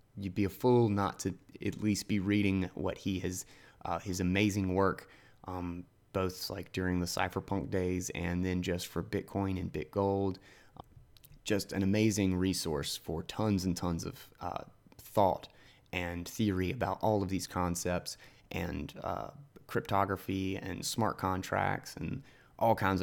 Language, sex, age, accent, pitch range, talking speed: English, male, 20-39, American, 90-105 Hz, 150 wpm